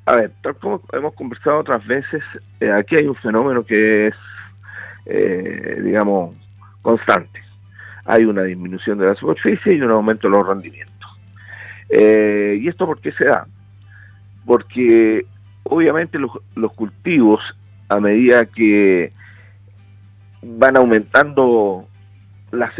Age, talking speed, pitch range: 50-69, 125 wpm, 100-115 Hz